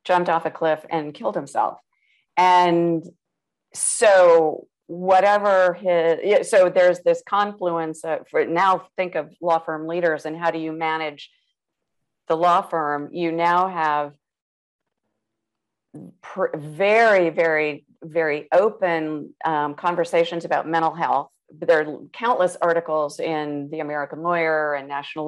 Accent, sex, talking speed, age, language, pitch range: American, female, 125 wpm, 50-69, English, 150-175 Hz